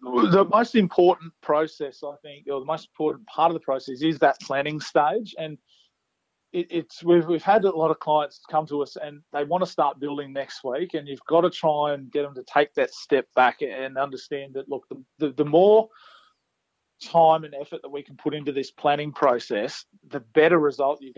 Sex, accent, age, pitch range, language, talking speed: male, Australian, 30-49, 135-160 Hz, English, 210 wpm